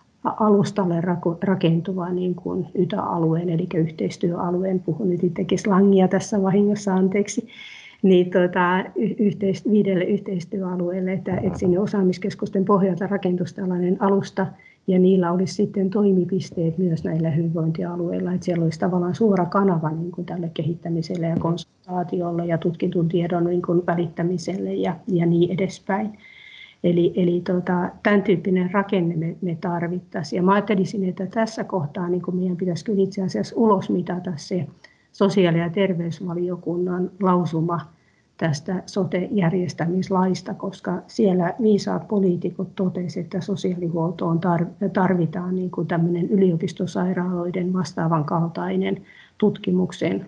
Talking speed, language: 120 wpm, Finnish